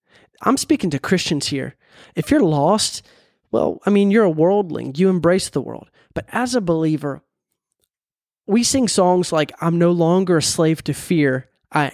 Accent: American